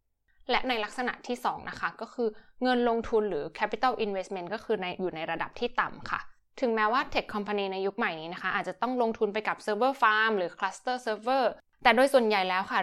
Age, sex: 20-39, female